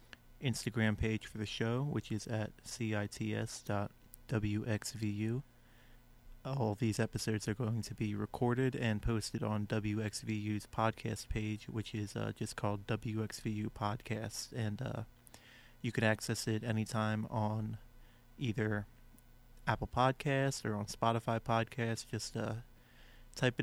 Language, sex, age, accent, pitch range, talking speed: English, male, 30-49, American, 110-120 Hz, 120 wpm